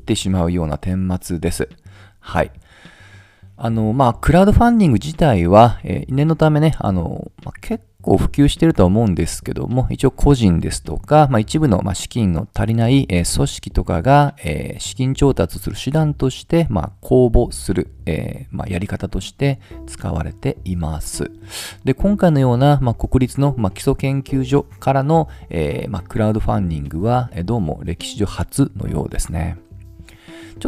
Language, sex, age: Japanese, male, 40-59